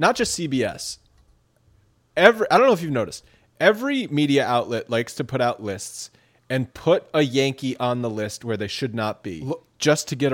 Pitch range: 115-160 Hz